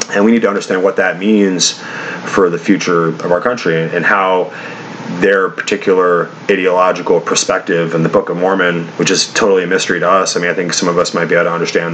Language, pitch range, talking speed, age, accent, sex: English, 85-95 Hz, 220 wpm, 30-49, American, male